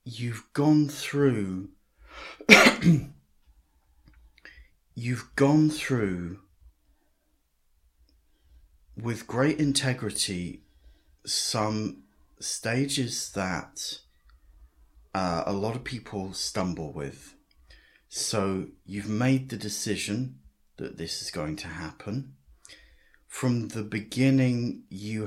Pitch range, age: 70-120 Hz, 30-49